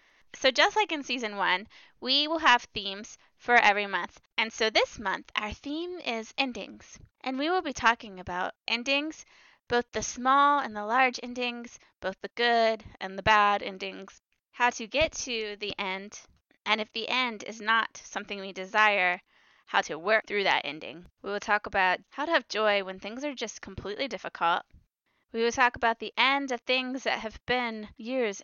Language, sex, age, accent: English, female, 20-39, American